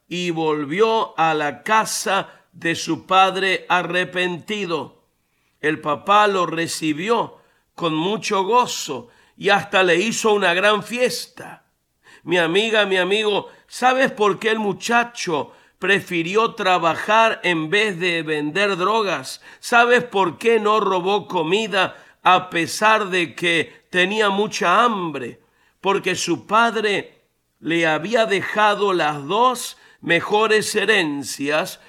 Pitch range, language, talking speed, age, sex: 175-215 Hz, Spanish, 115 wpm, 50-69, male